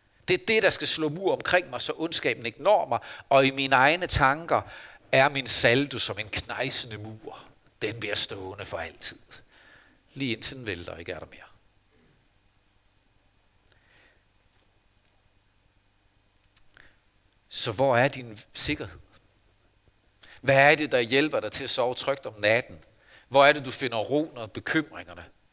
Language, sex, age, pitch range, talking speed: Danish, male, 60-79, 100-135 Hz, 150 wpm